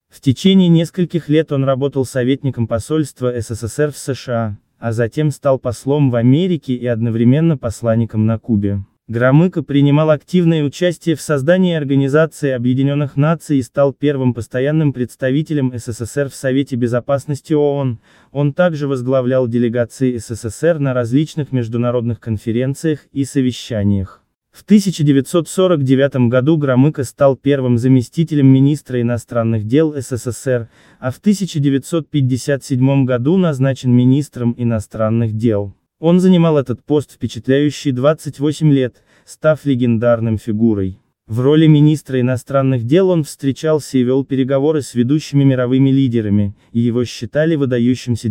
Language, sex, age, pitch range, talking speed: Russian, male, 20-39, 120-150 Hz, 125 wpm